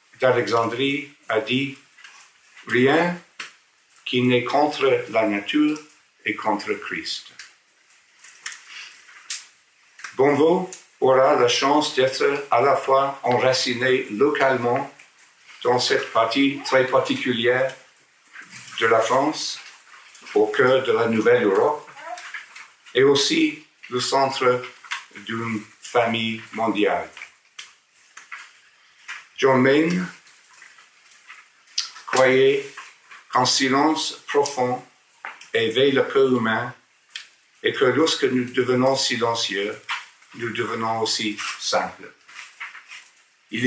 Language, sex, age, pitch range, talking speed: English, male, 50-69, 125-175 Hz, 90 wpm